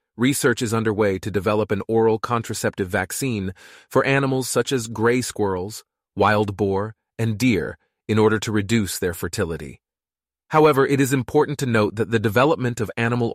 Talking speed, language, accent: 160 wpm, English, American